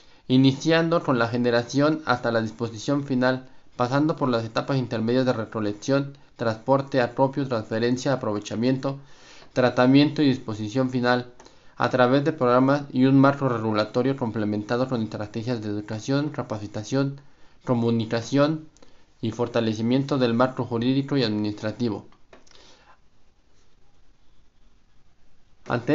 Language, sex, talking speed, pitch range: Spanish, male, 105 wpm, 115-140 Hz